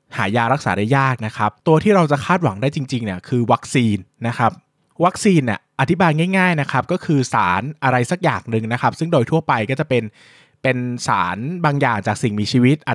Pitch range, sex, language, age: 115-150 Hz, male, Thai, 20-39